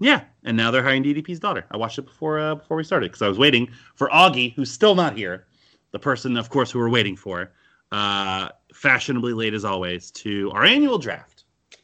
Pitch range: 100-130 Hz